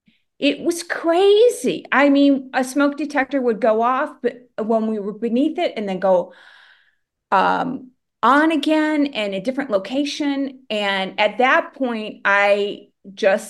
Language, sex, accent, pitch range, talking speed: English, female, American, 190-245 Hz, 145 wpm